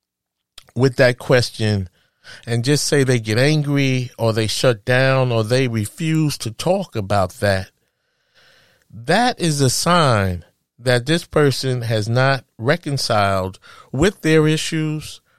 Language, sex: English, male